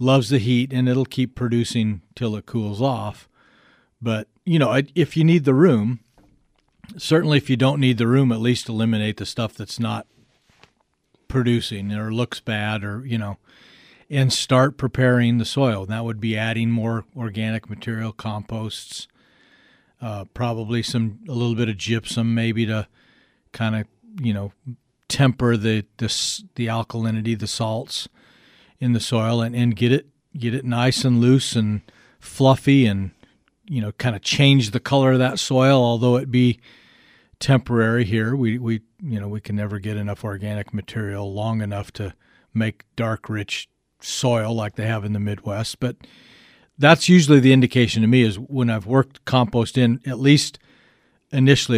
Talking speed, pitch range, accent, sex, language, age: 165 wpm, 110-130 Hz, American, male, English, 40-59